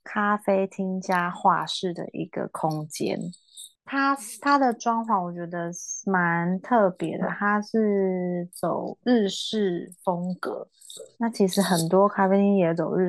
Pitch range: 175-200 Hz